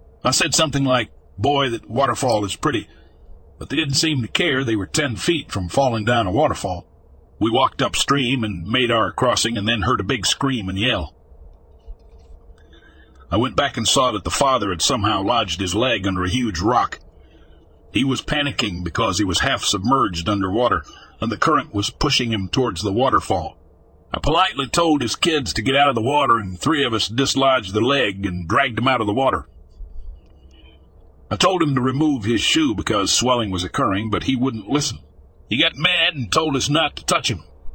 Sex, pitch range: male, 80-135 Hz